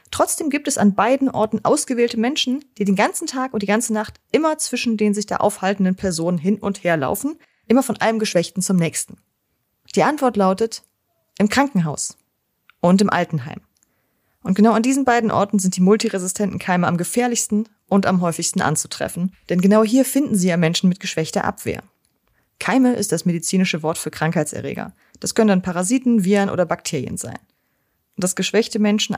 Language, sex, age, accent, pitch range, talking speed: German, female, 30-49, German, 175-225 Hz, 175 wpm